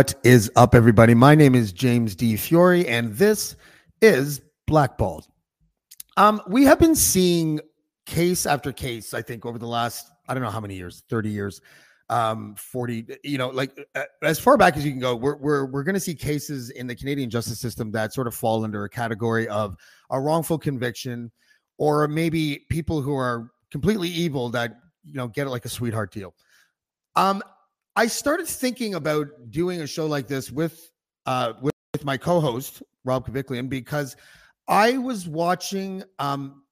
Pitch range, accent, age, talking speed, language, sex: 120-165 Hz, American, 30-49, 180 wpm, English, male